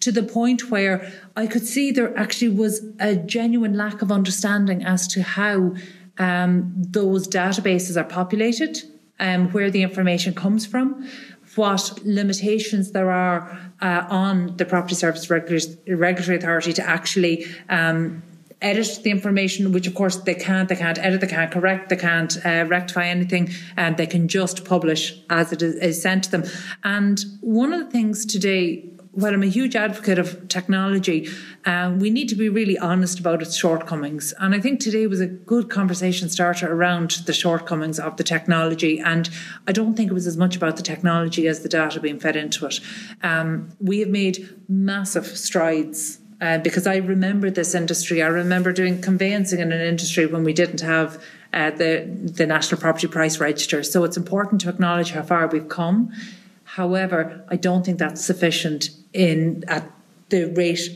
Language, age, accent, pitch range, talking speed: English, 40-59, Irish, 170-200 Hz, 175 wpm